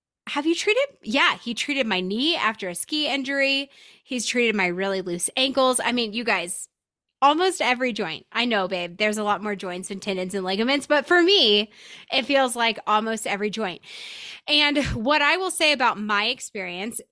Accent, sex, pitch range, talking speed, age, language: American, female, 205-280 Hz, 190 wpm, 20-39, English